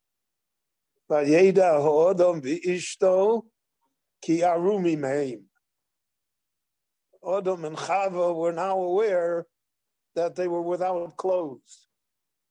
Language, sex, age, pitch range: English, male, 60-79, 155-185 Hz